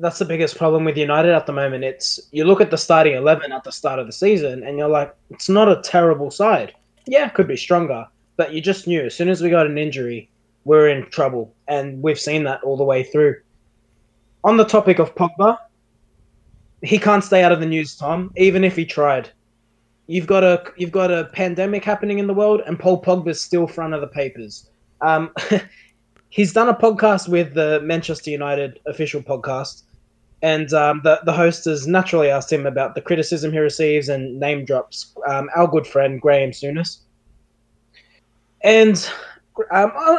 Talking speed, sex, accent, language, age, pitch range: 195 wpm, male, Australian, English, 20-39, 140-190 Hz